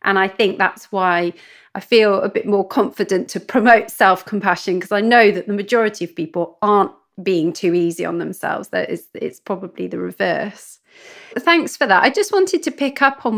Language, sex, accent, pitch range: English, female, British, 180-230 Hz